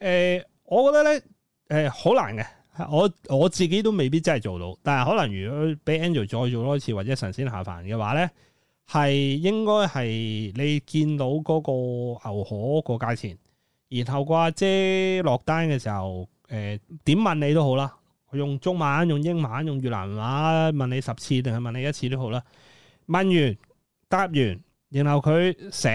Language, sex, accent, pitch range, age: Chinese, male, native, 115-165 Hz, 30-49